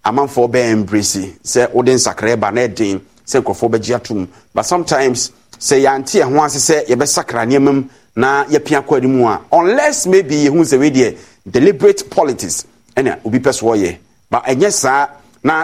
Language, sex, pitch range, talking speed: English, male, 120-155 Hz, 140 wpm